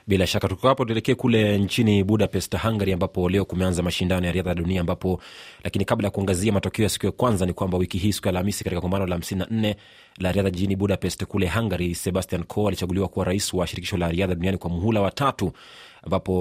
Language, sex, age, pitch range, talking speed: Swahili, male, 30-49, 90-105 Hz, 200 wpm